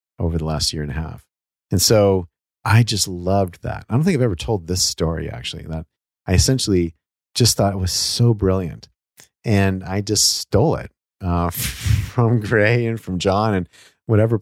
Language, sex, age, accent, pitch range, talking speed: English, male, 40-59, American, 85-105 Hz, 185 wpm